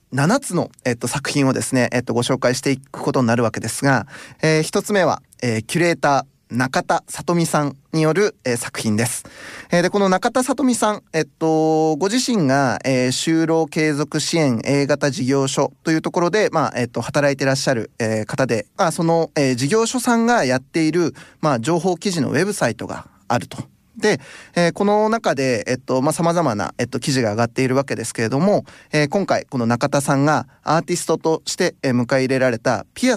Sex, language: male, Japanese